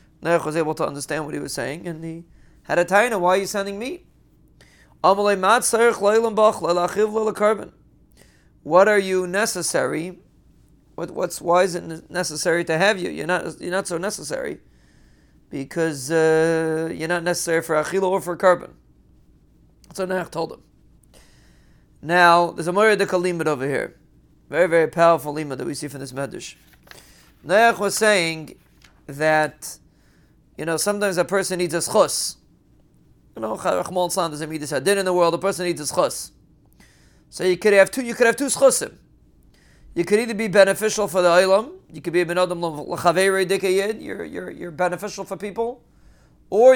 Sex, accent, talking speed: male, American, 165 wpm